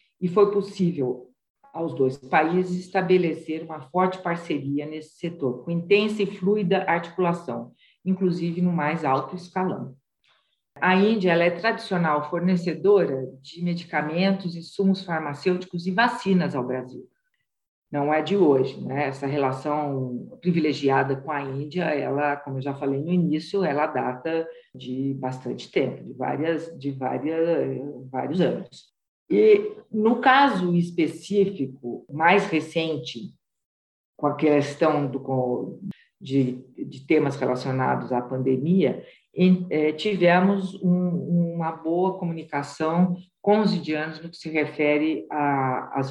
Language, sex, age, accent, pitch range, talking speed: Portuguese, female, 50-69, Brazilian, 140-185 Hz, 120 wpm